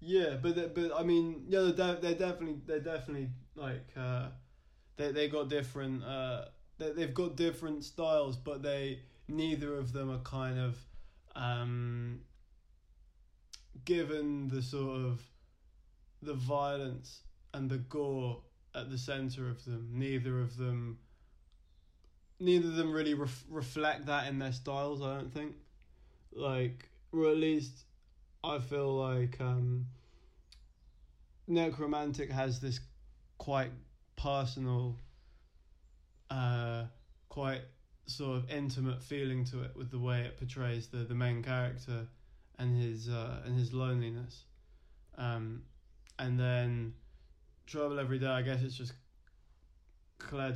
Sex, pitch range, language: male, 120-140 Hz, English